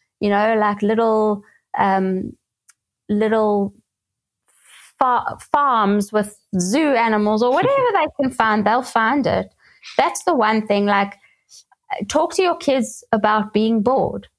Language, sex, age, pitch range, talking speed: English, female, 20-39, 195-230 Hz, 130 wpm